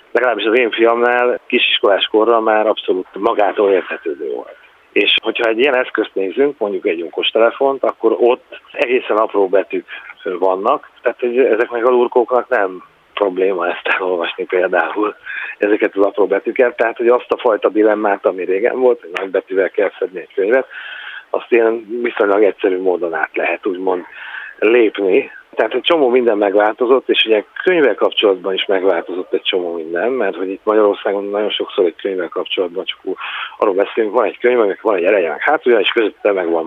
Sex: male